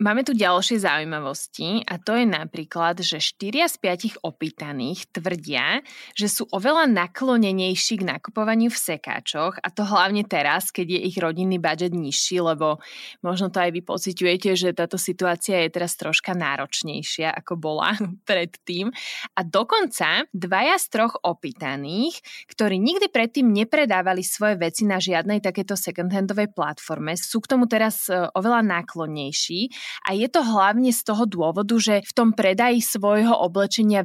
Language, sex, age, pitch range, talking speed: Slovak, female, 20-39, 170-220 Hz, 150 wpm